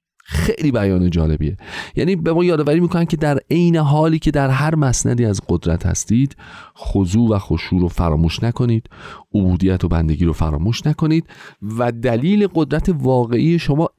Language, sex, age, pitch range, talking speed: Persian, male, 40-59, 85-135 Hz, 155 wpm